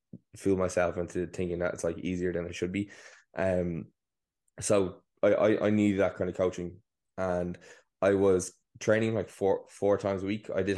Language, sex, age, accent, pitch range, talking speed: English, male, 20-39, Irish, 90-105 Hz, 190 wpm